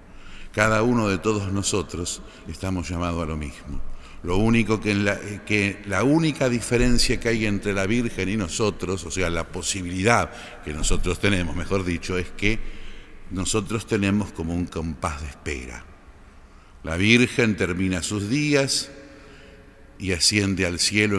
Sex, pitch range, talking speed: male, 85-115 Hz, 150 wpm